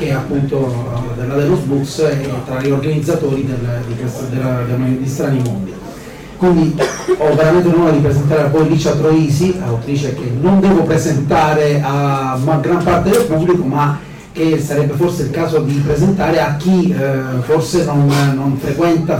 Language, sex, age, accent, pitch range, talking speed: Italian, male, 30-49, native, 140-165 Hz, 155 wpm